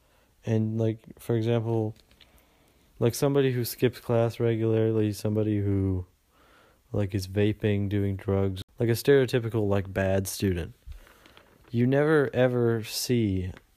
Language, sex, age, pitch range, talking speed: English, male, 20-39, 100-115 Hz, 120 wpm